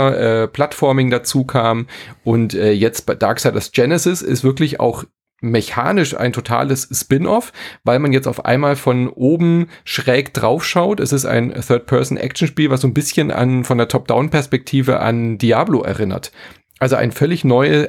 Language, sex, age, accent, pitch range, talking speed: German, male, 30-49, German, 115-145 Hz, 170 wpm